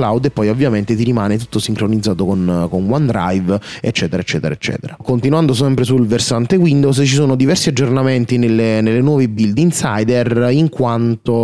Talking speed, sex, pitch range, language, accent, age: 150 wpm, male, 110-130 Hz, Italian, native, 30-49